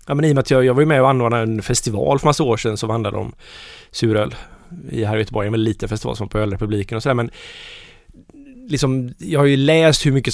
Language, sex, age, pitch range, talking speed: Swedish, male, 20-39, 115-145 Hz, 255 wpm